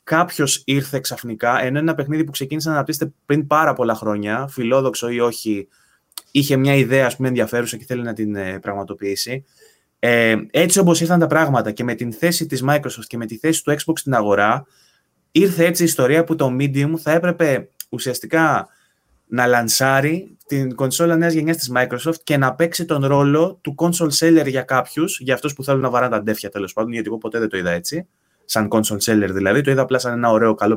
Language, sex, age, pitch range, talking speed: Greek, male, 20-39, 120-160 Hz, 205 wpm